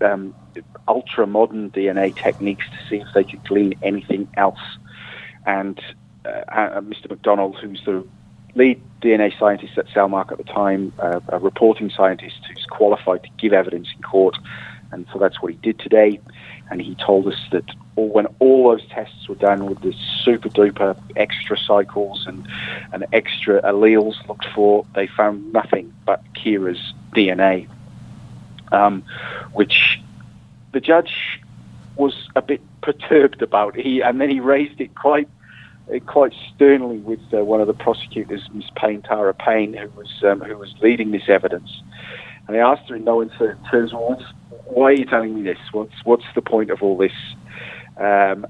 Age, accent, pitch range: 40-59, British, 100-115 Hz